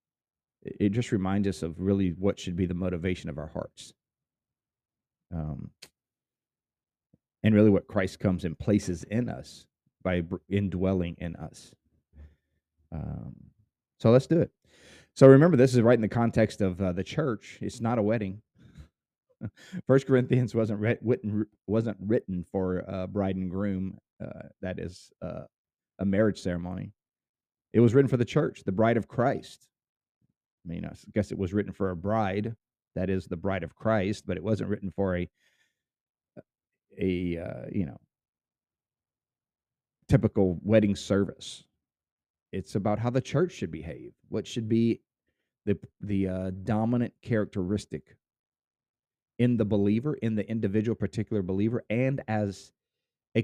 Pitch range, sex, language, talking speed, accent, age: 95-115 Hz, male, English, 145 wpm, American, 30-49